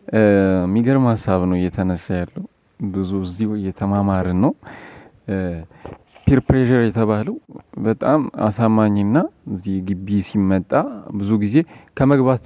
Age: 30-49